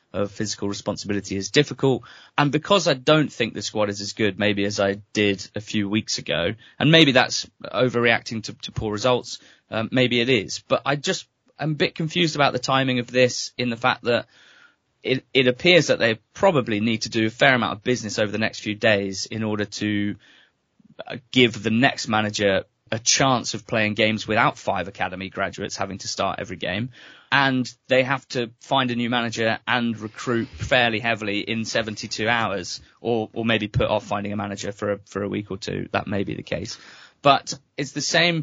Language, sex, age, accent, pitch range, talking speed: English, male, 20-39, British, 105-125 Hz, 200 wpm